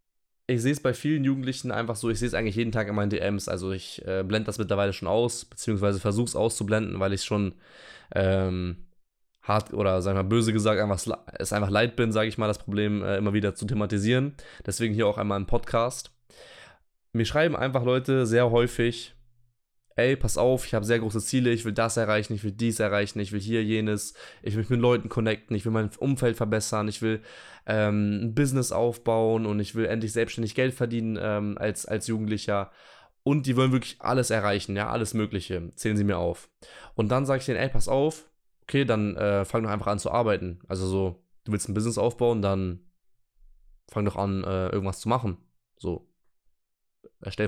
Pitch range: 100-115 Hz